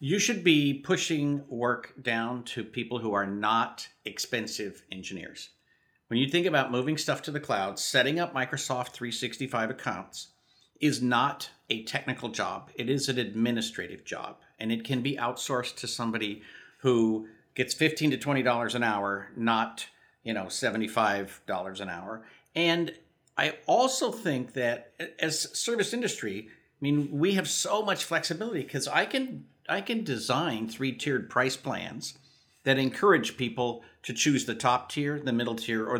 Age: 50-69